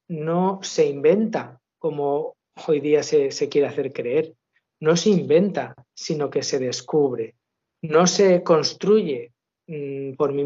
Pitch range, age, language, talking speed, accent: 145-195 Hz, 50-69, Spanish, 130 wpm, Spanish